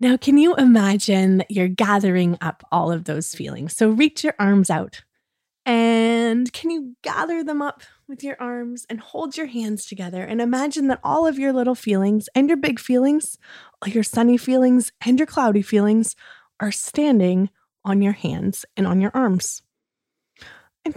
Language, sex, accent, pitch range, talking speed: English, female, American, 190-260 Hz, 170 wpm